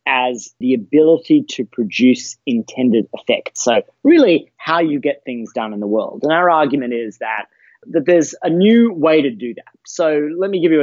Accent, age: Australian, 30-49